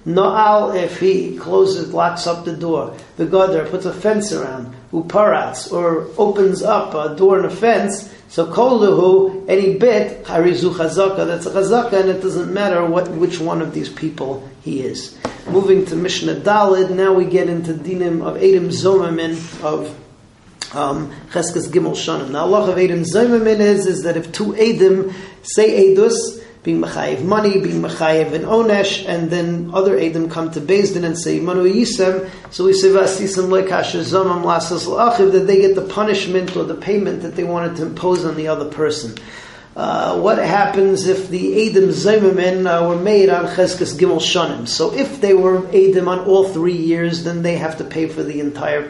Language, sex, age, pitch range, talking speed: English, male, 40-59, 170-200 Hz, 175 wpm